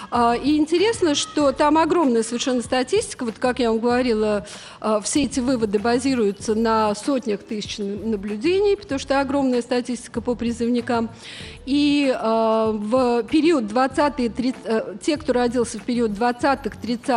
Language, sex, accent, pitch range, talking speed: Russian, female, native, 220-280 Hz, 120 wpm